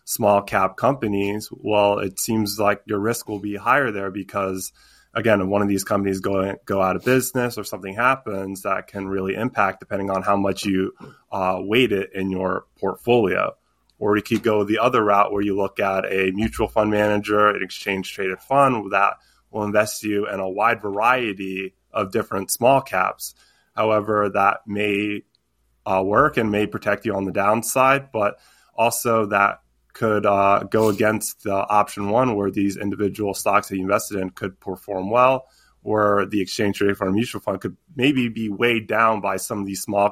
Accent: American